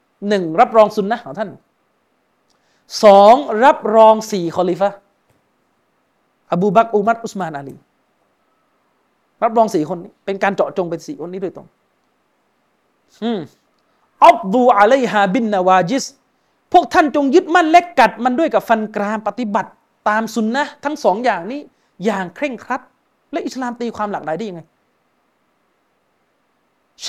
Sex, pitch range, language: male, 190-255 Hz, Thai